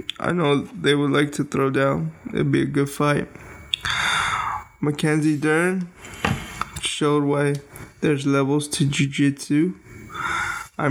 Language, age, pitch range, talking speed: English, 20-39, 140-155 Hz, 120 wpm